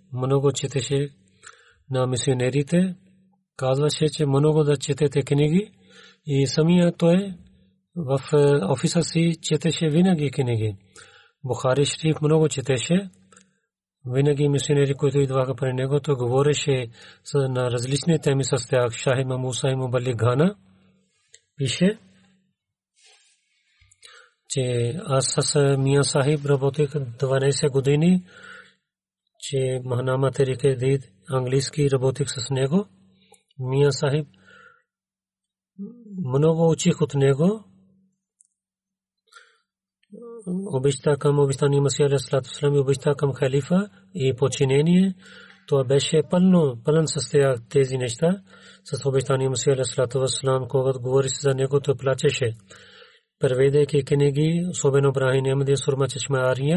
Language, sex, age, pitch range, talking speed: Bulgarian, male, 40-59, 135-165 Hz, 80 wpm